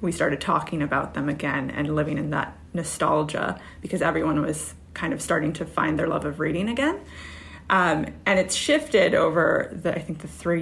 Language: English